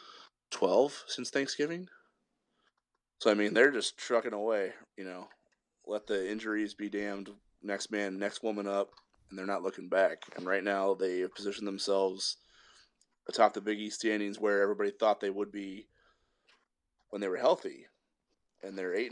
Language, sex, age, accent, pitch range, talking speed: English, male, 20-39, American, 95-110 Hz, 160 wpm